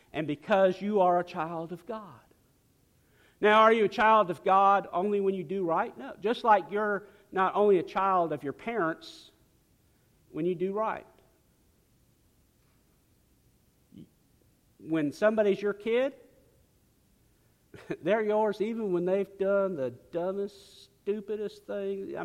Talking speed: 135 wpm